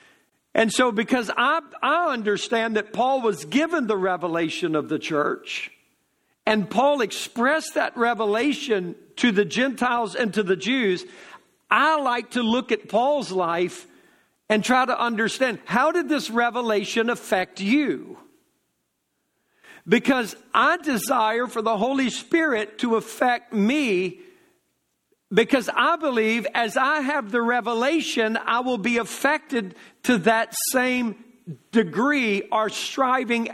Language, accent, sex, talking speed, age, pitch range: English, American, male, 130 wpm, 60-79, 205-275 Hz